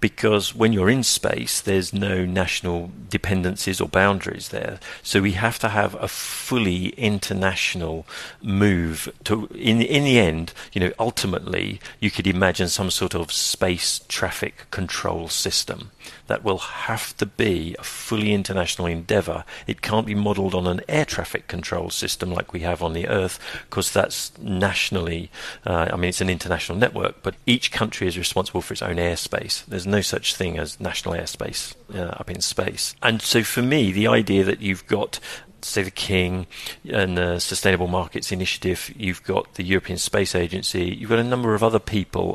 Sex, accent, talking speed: male, British, 175 wpm